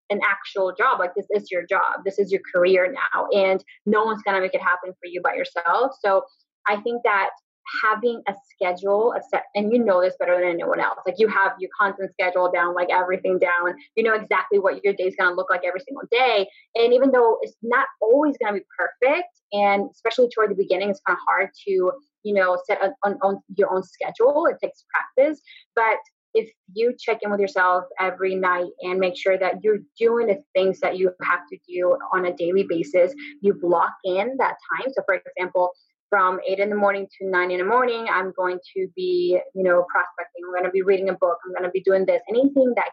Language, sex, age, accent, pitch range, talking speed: English, female, 20-39, American, 180-230 Hz, 225 wpm